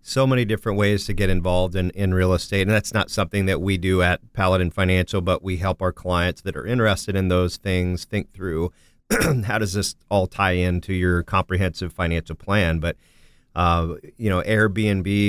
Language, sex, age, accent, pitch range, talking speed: English, male, 40-59, American, 90-100 Hz, 190 wpm